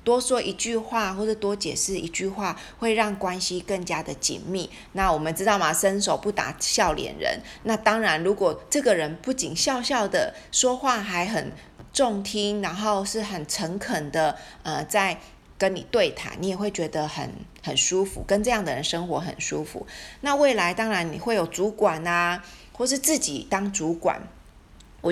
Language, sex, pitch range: Chinese, female, 170-220 Hz